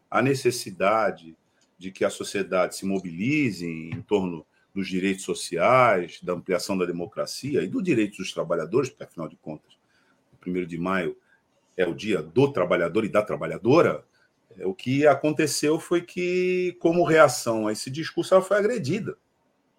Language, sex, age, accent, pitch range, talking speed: Portuguese, male, 50-69, Brazilian, 90-150 Hz, 155 wpm